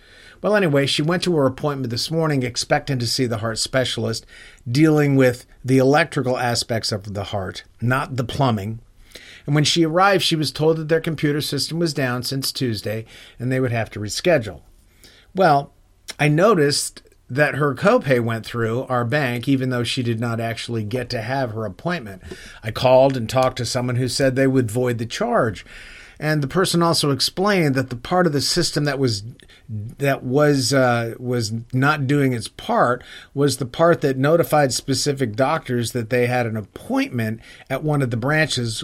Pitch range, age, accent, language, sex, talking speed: 115-145 Hz, 50-69, American, English, male, 185 wpm